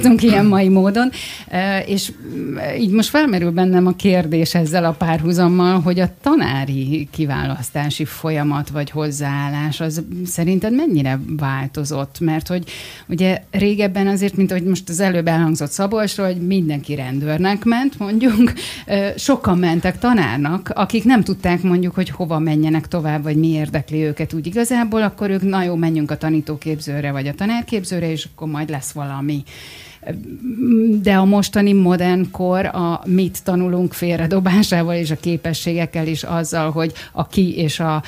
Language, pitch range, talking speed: Hungarian, 155-185 Hz, 145 wpm